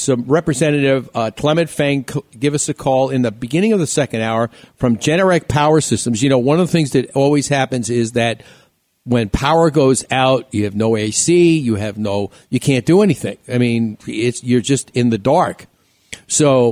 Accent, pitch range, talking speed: American, 120-145 Hz, 200 wpm